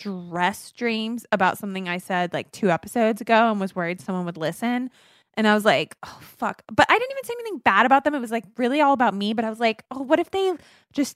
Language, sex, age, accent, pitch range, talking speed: English, female, 20-39, American, 190-245 Hz, 255 wpm